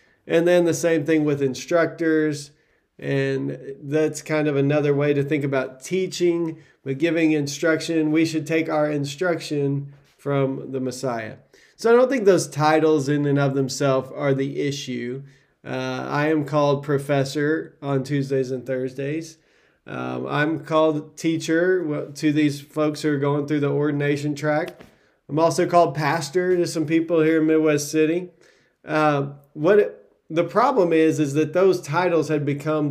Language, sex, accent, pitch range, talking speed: English, male, American, 140-160 Hz, 155 wpm